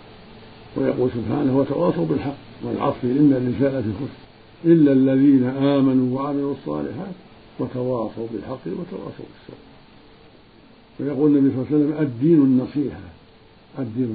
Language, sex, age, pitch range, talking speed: Arabic, male, 50-69, 120-145 Hz, 110 wpm